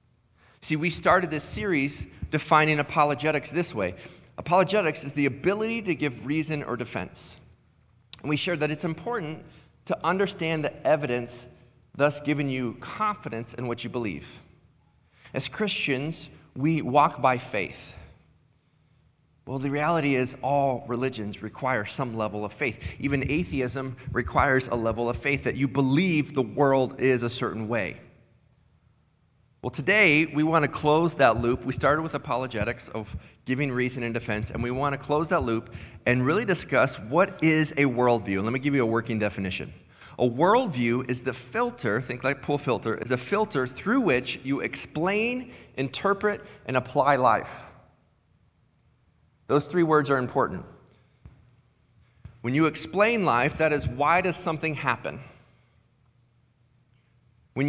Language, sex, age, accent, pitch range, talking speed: English, male, 30-49, American, 120-155 Hz, 150 wpm